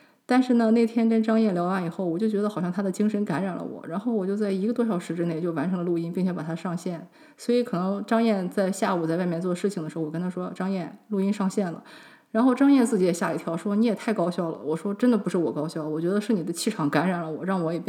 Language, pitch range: English, 165-205 Hz